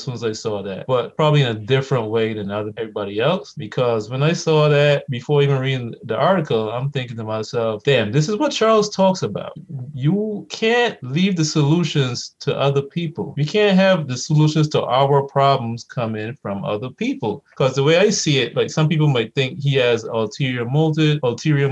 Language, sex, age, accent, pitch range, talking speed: English, male, 20-39, American, 115-155 Hz, 200 wpm